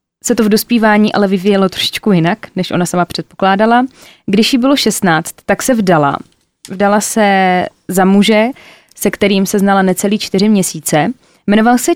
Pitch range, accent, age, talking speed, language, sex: 190-220 Hz, native, 20-39, 160 wpm, Czech, female